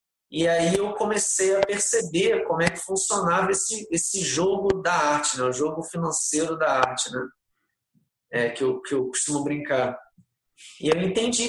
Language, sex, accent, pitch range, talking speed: Portuguese, male, Brazilian, 145-185 Hz, 165 wpm